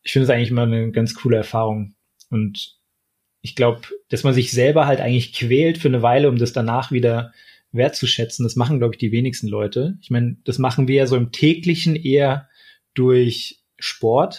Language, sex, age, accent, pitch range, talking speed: German, male, 20-39, German, 115-135 Hz, 190 wpm